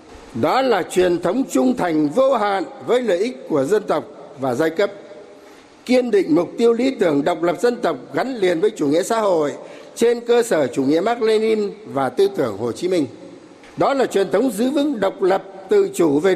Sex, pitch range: male, 175-280 Hz